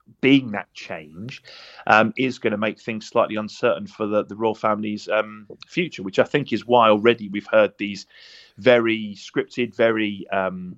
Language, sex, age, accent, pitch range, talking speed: English, male, 30-49, British, 100-120 Hz, 175 wpm